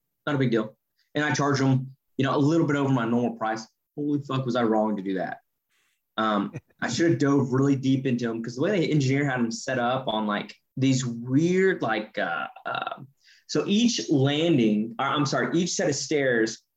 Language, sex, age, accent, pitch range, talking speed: English, male, 20-39, American, 125-155 Hz, 215 wpm